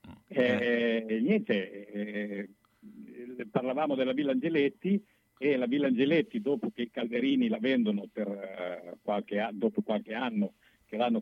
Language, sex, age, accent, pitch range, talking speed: Italian, male, 50-69, native, 105-165 Hz, 145 wpm